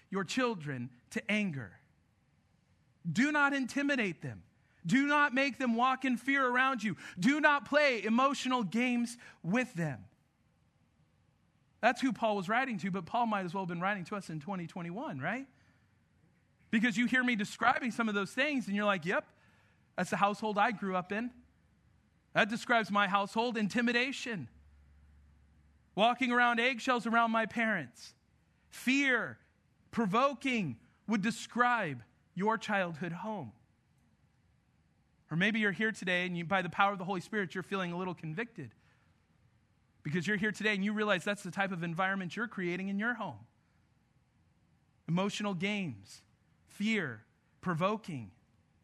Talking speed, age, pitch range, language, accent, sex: 150 wpm, 40-59, 160-230 Hz, English, American, male